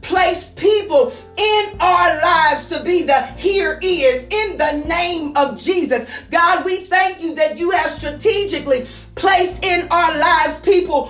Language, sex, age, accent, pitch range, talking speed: English, female, 40-59, American, 300-365 Hz, 150 wpm